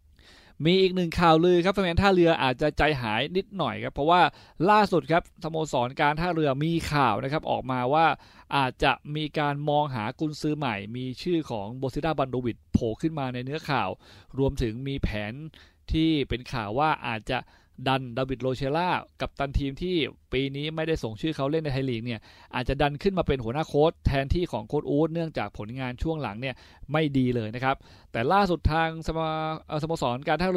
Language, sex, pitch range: Thai, male, 120-155 Hz